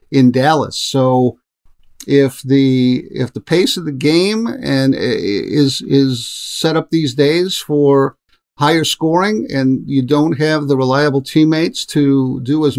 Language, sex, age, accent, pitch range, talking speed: English, male, 50-69, American, 125-145 Hz, 145 wpm